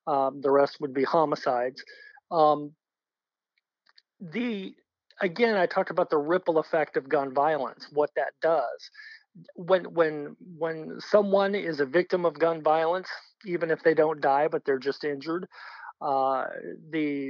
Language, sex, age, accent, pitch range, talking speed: English, male, 40-59, American, 150-190 Hz, 145 wpm